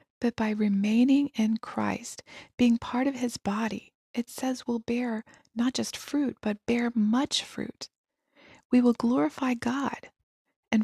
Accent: American